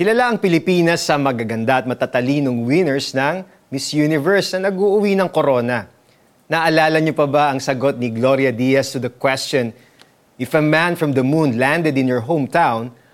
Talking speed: 170 wpm